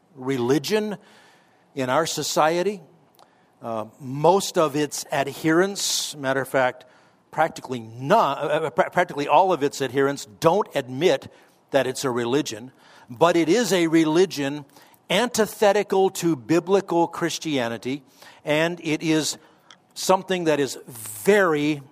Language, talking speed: English, 115 wpm